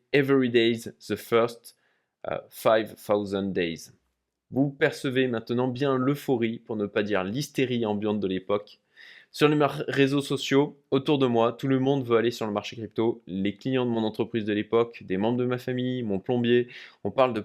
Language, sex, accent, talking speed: French, male, French, 195 wpm